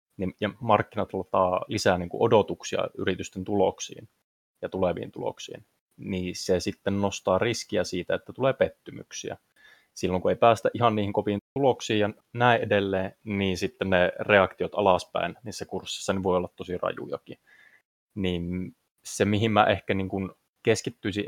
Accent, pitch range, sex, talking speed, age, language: native, 95-105 Hz, male, 130 wpm, 20-39, Finnish